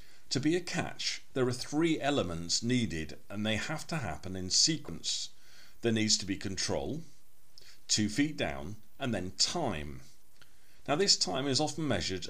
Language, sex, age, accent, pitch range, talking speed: English, male, 50-69, British, 95-140 Hz, 160 wpm